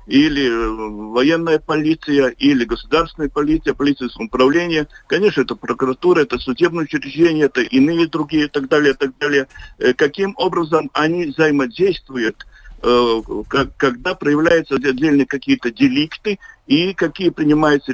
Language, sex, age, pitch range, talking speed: Russian, male, 50-69, 135-180 Hz, 115 wpm